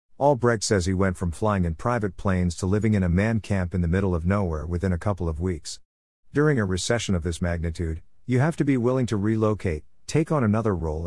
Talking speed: 230 wpm